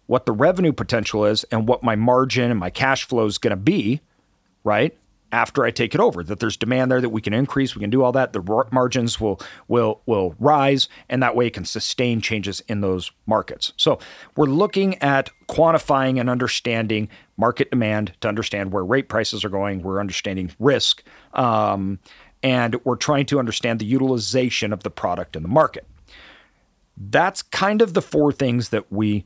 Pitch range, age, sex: 105-135 Hz, 40-59, male